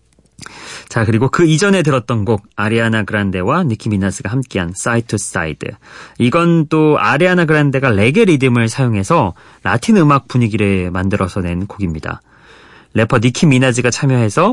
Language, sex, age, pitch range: Korean, male, 30-49, 100-140 Hz